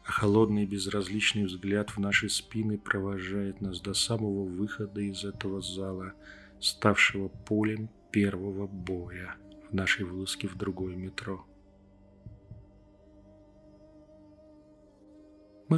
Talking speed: 105 wpm